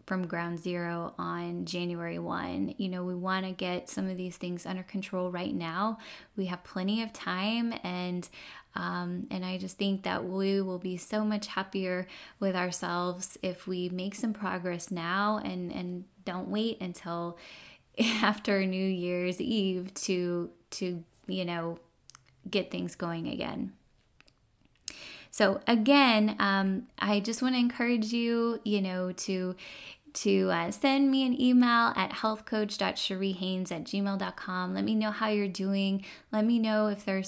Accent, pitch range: American, 180-215 Hz